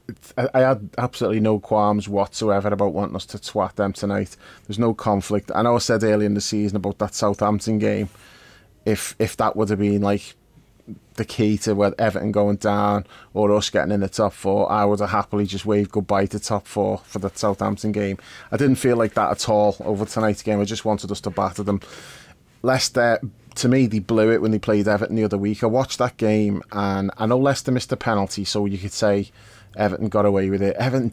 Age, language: 30-49, English